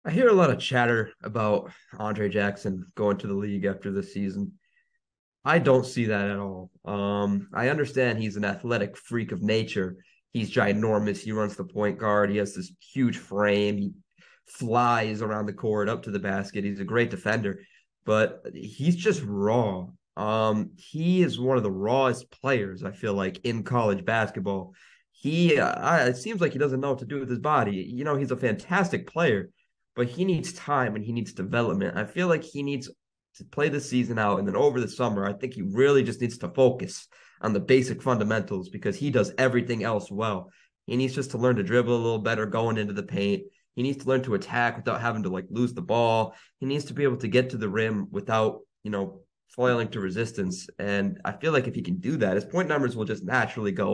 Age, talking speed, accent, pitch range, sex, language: 30-49, 215 wpm, American, 100-130 Hz, male, English